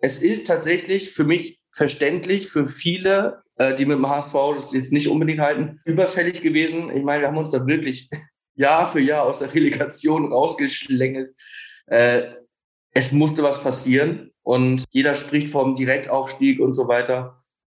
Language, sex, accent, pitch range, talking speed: German, male, German, 135-175 Hz, 155 wpm